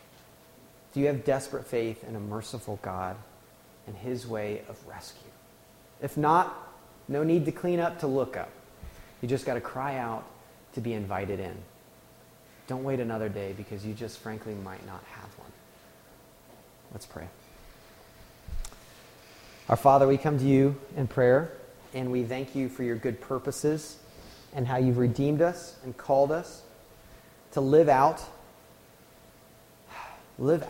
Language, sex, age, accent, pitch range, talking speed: English, male, 30-49, American, 105-140 Hz, 150 wpm